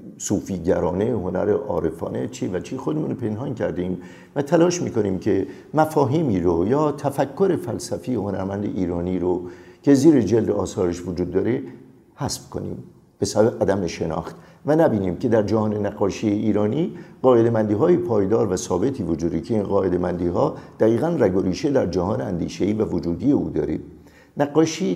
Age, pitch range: 50-69, 90-125 Hz